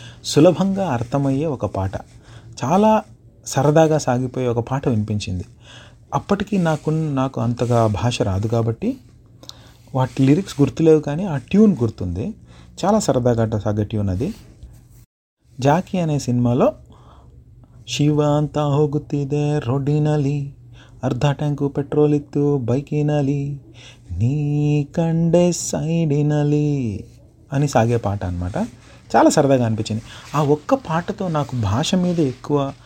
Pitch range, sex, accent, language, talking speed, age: 120-150 Hz, male, native, Telugu, 105 wpm, 30-49